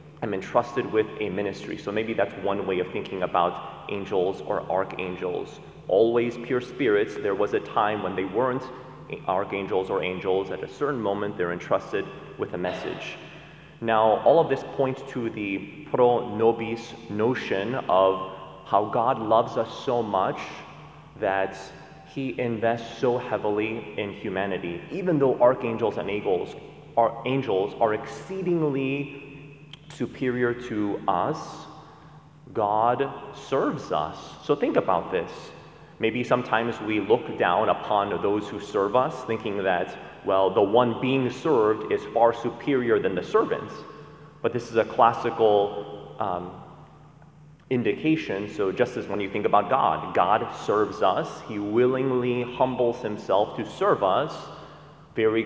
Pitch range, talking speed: 105-140 Hz, 135 wpm